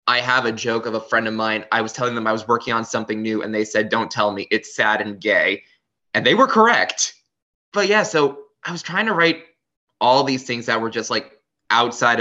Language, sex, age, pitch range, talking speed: English, male, 20-39, 105-125 Hz, 240 wpm